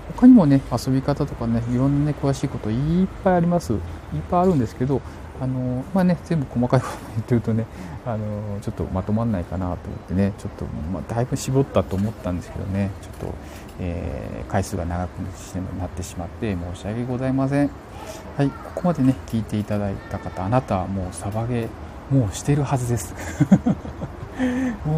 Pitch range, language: 95-125 Hz, Japanese